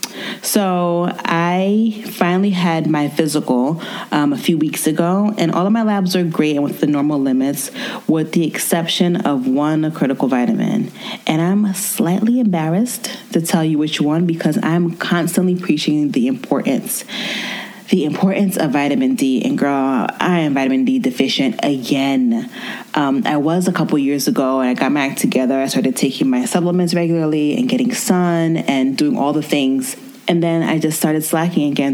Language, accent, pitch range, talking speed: English, American, 160-235 Hz, 175 wpm